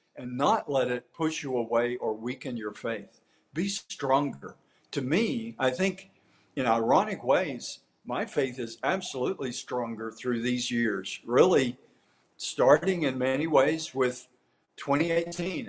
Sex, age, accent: male, 50-69, American